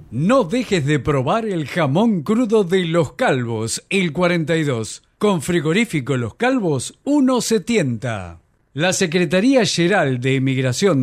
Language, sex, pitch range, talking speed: Spanish, male, 145-215 Hz, 120 wpm